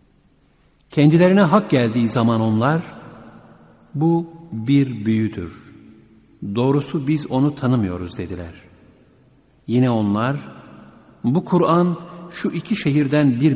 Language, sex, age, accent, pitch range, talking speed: Turkish, male, 50-69, native, 105-145 Hz, 95 wpm